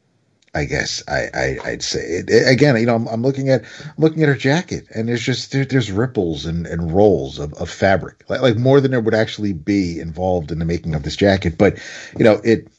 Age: 40-59